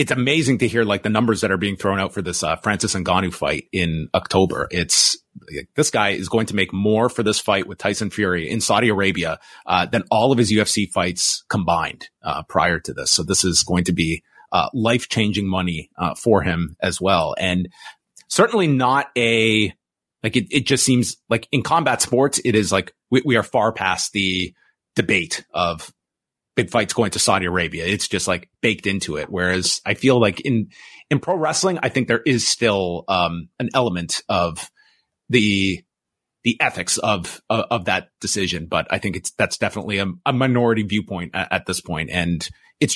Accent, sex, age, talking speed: American, male, 30-49, 195 wpm